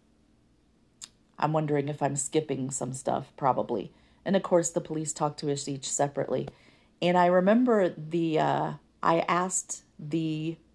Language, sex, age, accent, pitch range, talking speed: English, female, 40-59, American, 150-190 Hz, 145 wpm